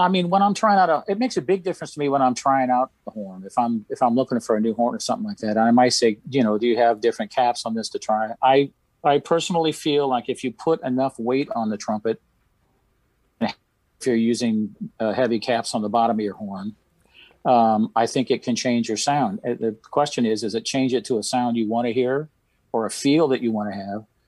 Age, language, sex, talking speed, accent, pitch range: 40-59, English, male, 250 wpm, American, 110-130 Hz